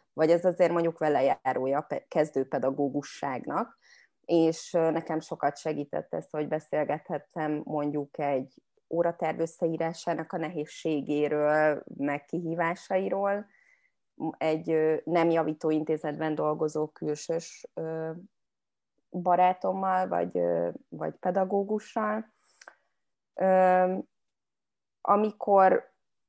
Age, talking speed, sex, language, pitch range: 20-39, 80 wpm, female, Hungarian, 150-180 Hz